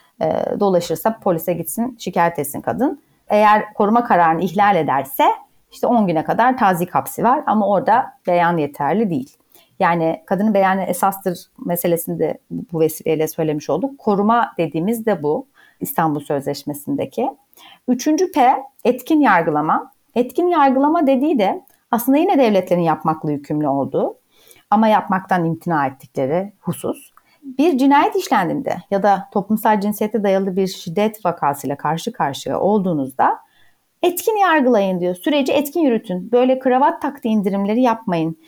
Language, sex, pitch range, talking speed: Turkish, female, 180-260 Hz, 130 wpm